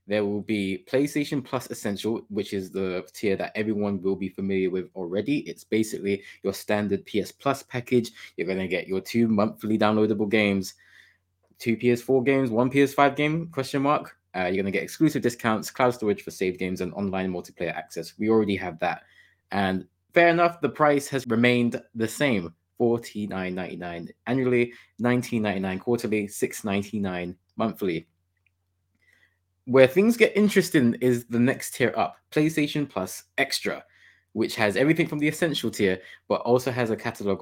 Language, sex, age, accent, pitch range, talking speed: English, male, 20-39, British, 95-125 Hz, 160 wpm